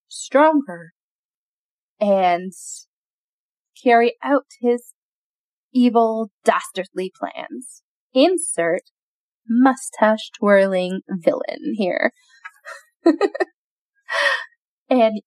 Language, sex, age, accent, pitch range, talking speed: English, female, 10-29, American, 200-270 Hz, 55 wpm